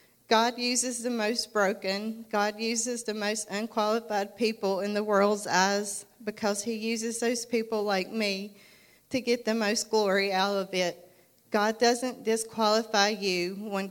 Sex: female